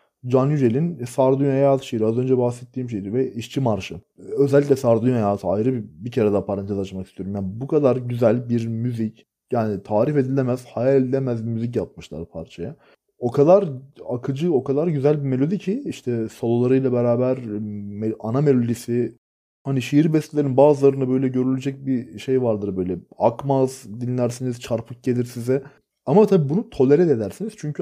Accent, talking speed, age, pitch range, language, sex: native, 160 wpm, 30-49, 115-140 Hz, Turkish, male